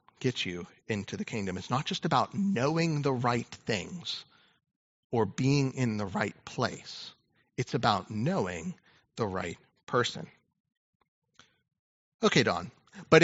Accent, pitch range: American, 125-185 Hz